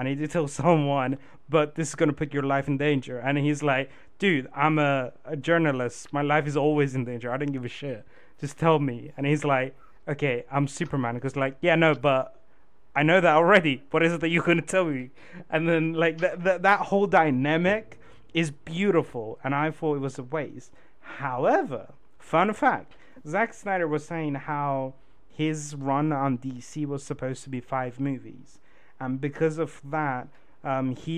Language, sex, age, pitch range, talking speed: English, male, 30-49, 135-160 Hz, 195 wpm